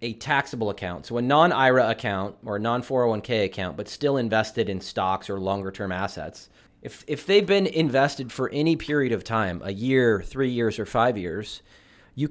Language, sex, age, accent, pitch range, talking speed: English, male, 30-49, American, 100-130 Hz, 190 wpm